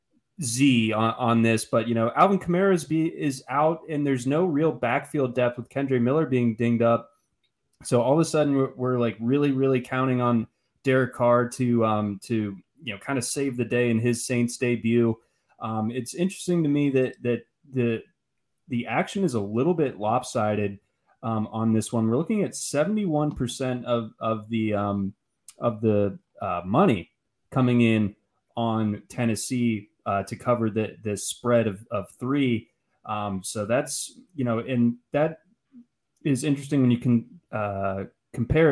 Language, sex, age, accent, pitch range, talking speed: English, male, 20-39, American, 110-135 Hz, 170 wpm